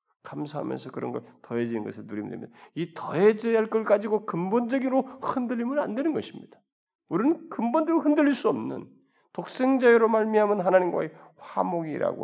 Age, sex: 40-59, male